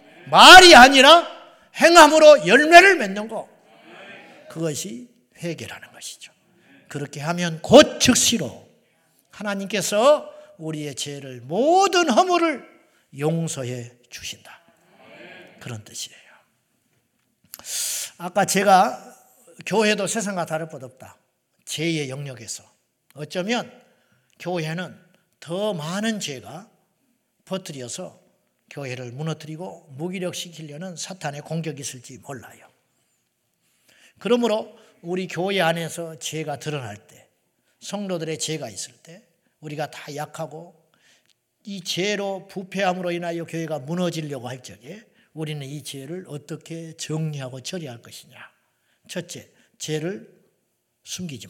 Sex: male